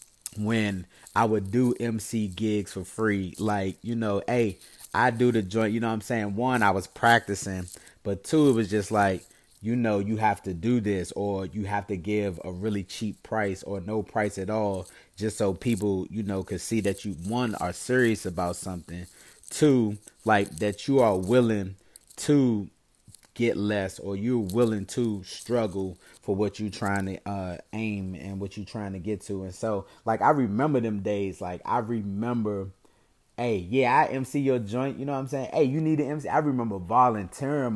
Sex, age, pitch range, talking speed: male, 30-49, 95-120 Hz, 195 wpm